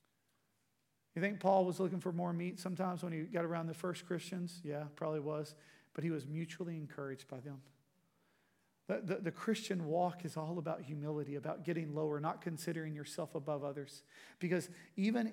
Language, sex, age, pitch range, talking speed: English, male, 40-59, 155-185 Hz, 175 wpm